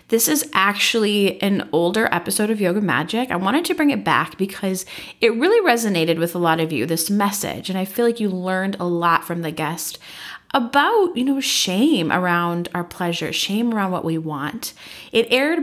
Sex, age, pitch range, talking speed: female, 30-49, 180-250 Hz, 195 wpm